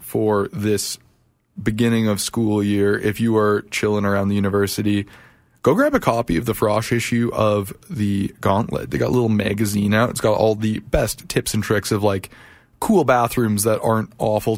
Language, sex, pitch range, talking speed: English, male, 105-120 Hz, 185 wpm